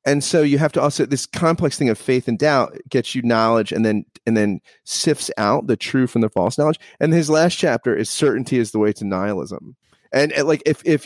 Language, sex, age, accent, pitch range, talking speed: English, male, 30-49, American, 105-140 Hz, 240 wpm